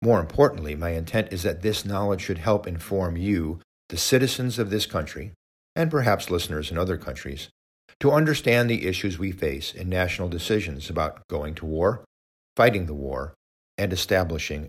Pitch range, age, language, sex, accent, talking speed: 80-110 Hz, 50-69, English, male, American, 170 wpm